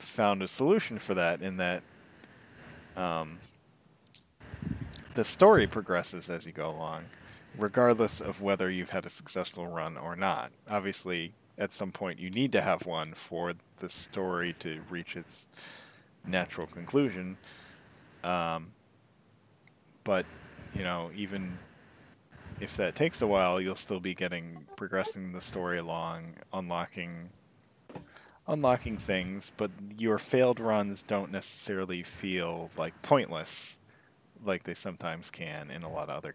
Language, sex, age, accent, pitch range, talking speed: English, male, 30-49, American, 85-105 Hz, 135 wpm